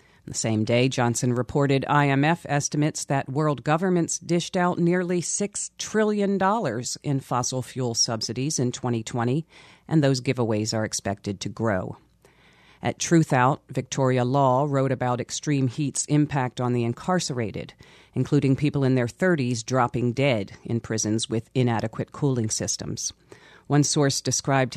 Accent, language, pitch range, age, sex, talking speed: American, English, 125-155 Hz, 40-59, female, 135 wpm